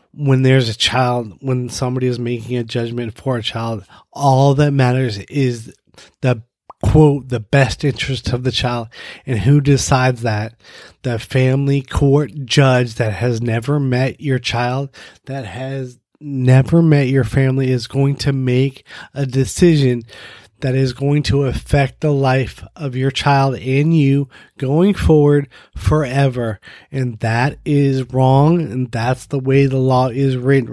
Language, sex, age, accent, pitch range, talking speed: English, male, 30-49, American, 120-140 Hz, 150 wpm